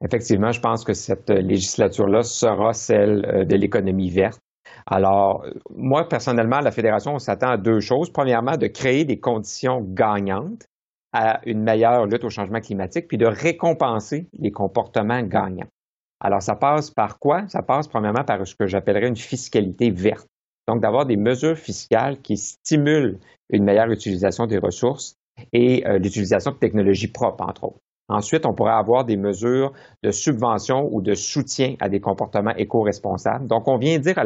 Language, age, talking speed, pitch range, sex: French, 50-69, 165 wpm, 100-120 Hz, male